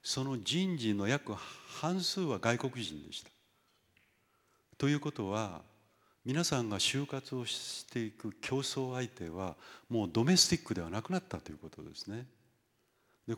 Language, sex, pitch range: Japanese, male, 105-150 Hz